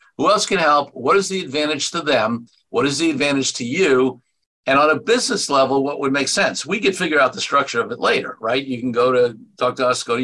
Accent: American